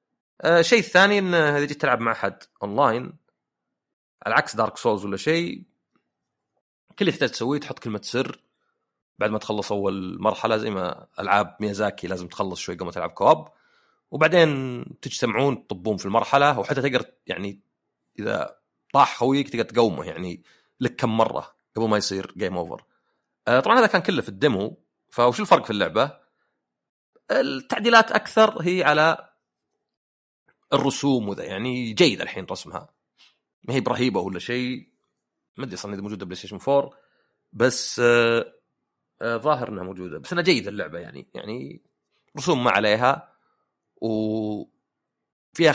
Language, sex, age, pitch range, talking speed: Arabic, male, 30-49, 100-140 Hz, 140 wpm